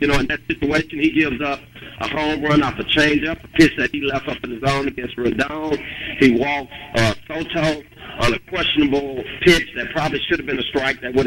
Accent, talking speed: American, 225 wpm